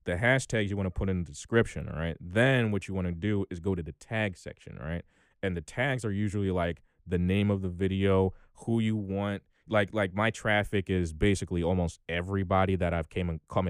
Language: English